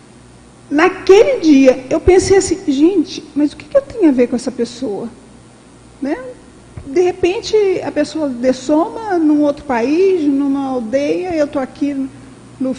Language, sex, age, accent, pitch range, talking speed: Portuguese, female, 50-69, Brazilian, 270-335 Hz, 150 wpm